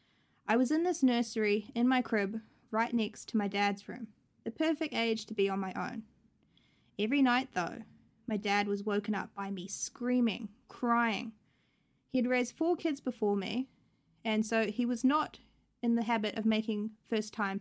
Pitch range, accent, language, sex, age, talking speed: 205-245 Hz, Australian, English, female, 20-39, 175 wpm